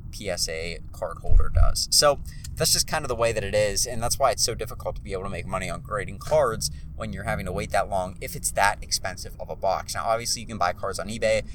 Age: 30-49